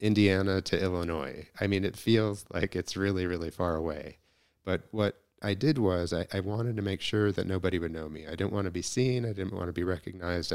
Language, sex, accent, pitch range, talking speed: English, male, American, 85-100 Hz, 235 wpm